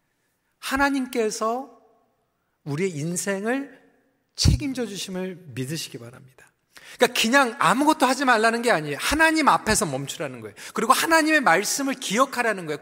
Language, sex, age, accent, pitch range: Korean, male, 40-59, native, 200-275 Hz